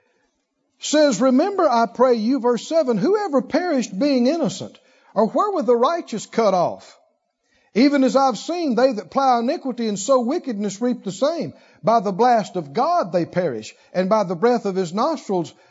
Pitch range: 215-295 Hz